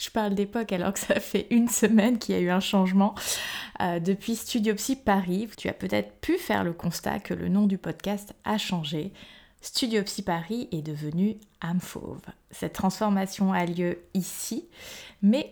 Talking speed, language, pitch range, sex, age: 180 wpm, French, 180-220 Hz, female, 20-39